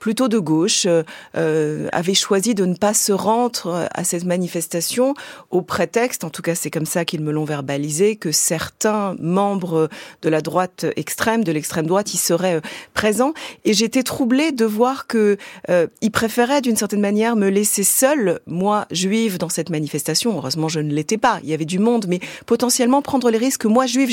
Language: French